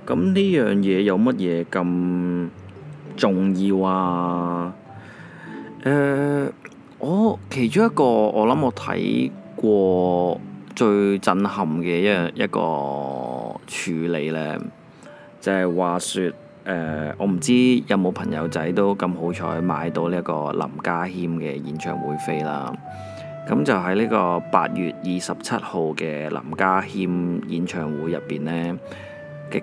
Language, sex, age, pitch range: Chinese, male, 20-39, 85-100 Hz